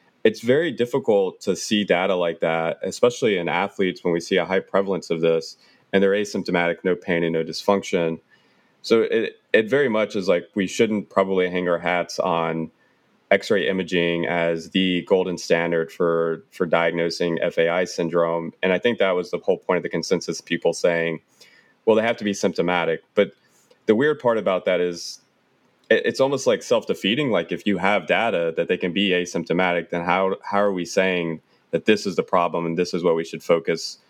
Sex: male